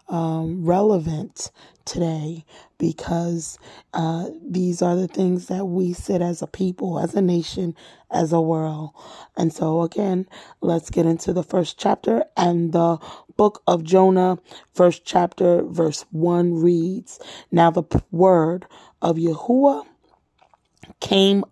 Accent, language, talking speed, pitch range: American, English, 130 wpm, 170-205 Hz